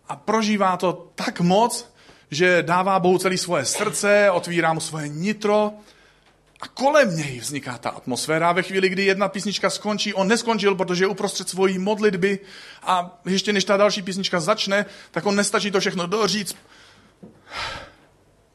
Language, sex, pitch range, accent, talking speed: Czech, male, 140-195 Hz, native, 150 wpm